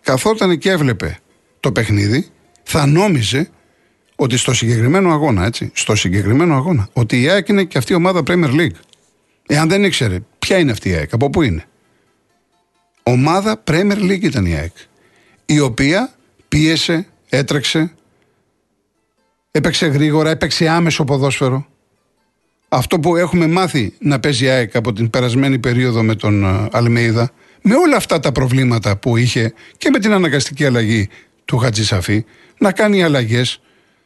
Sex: male